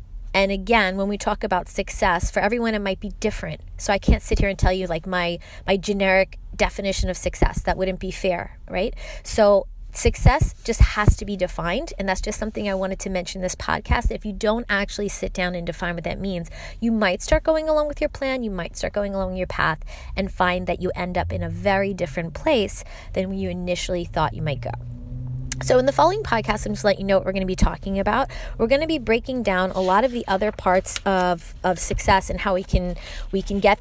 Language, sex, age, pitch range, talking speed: English, female, 20-39, 185-230 Hz, 240 wpm